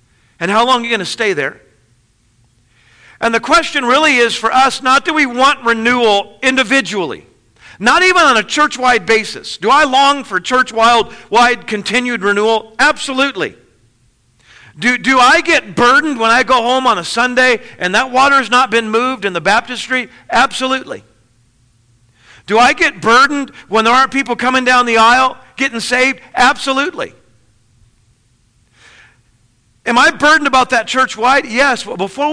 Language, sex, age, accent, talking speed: English, male, 50-69, American, 160 wpm